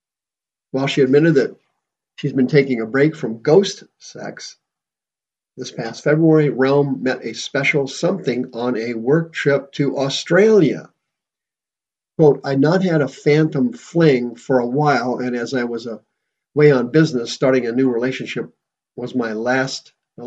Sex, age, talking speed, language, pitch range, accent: male, 50-69, 145 wpm, English, 125-145 Hz, American